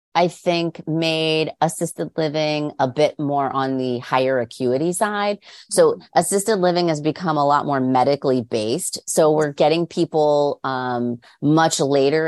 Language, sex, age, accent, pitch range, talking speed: English, female, 30-49, American, 130-165 Hz, 145 wpm